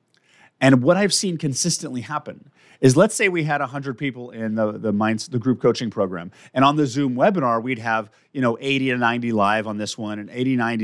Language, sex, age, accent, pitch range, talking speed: English, male, 30-49, American, 115-150 Hz, 210 wpm